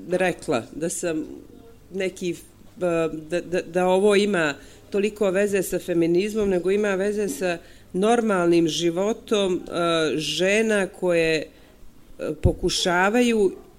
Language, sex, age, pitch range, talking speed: English, female, 40-59, 170-200 Hz, 95 wpm